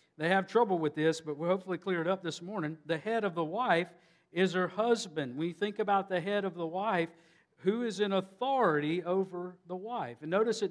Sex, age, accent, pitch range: male, 50-69, American, 160-200 Hz